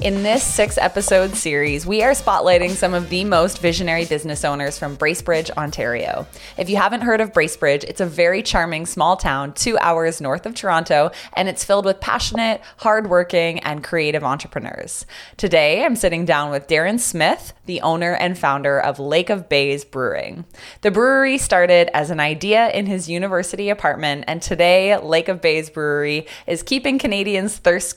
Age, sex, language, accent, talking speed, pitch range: 20-39, female, English, American, 170 wpm, 150-205 Hz